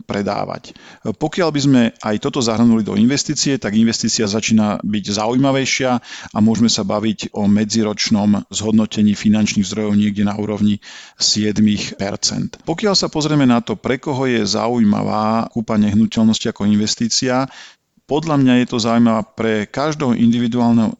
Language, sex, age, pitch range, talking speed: Slovak, male, 40-59, 105-125 Hz, 135 wpm